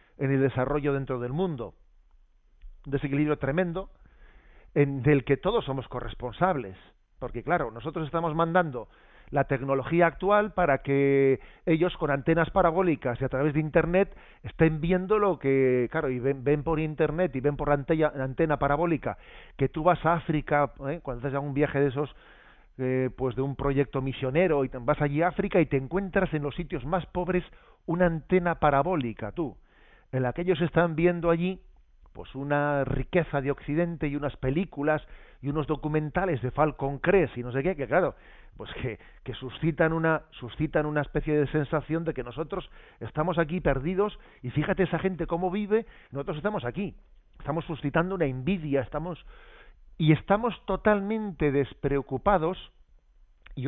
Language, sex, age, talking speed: Spanish, male, 40-59, 165 wpm